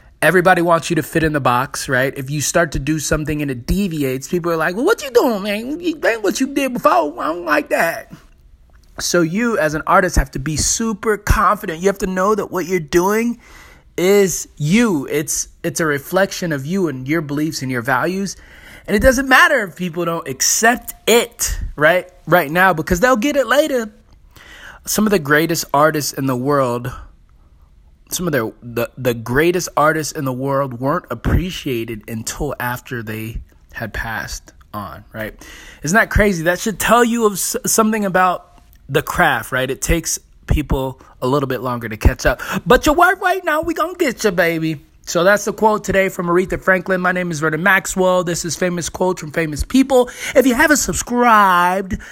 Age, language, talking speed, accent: 20-39, English, 195 wpm, American